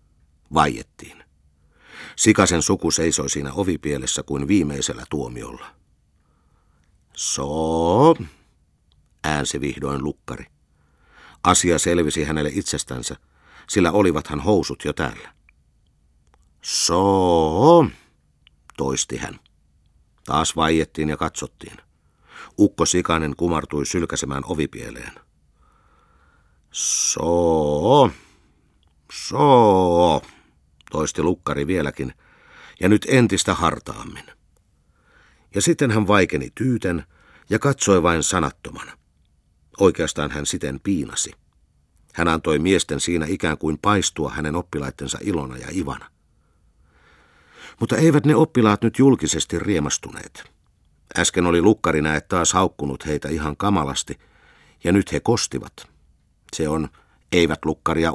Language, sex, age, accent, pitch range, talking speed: Finnish, male, 50-69, native, 75-90 Hz, 95 wpm